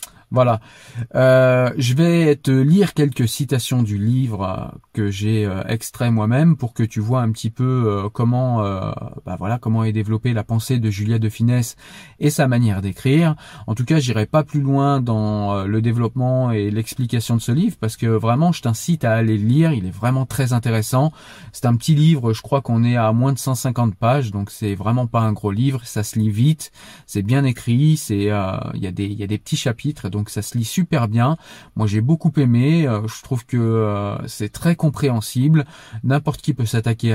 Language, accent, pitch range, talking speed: French, French, 110-135 Hz, 205 wpm